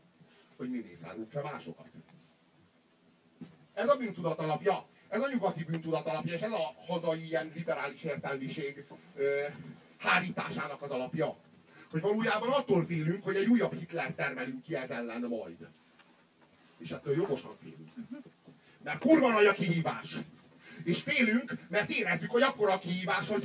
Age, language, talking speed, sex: 40-59, Hungarian, 135 wpm, male